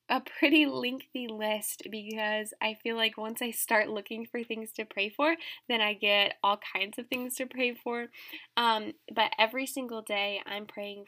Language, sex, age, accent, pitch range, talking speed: English, female, 10-29, American, 210-255 Hz, 185 wpm